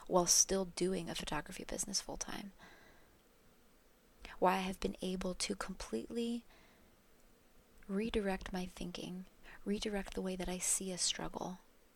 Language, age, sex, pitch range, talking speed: English, 20-39, female, 180-225 Hz, 125 wpm